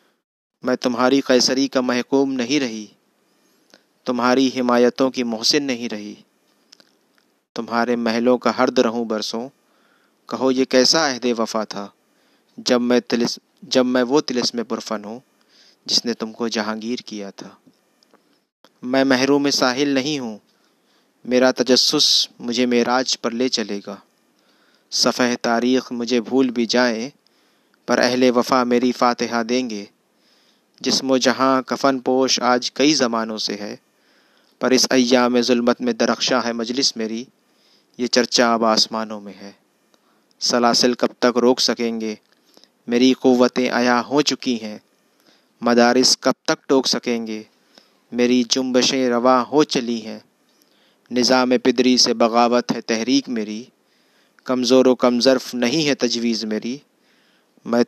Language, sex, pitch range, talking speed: Hindi, male, 115-130 Hz, 130 wpm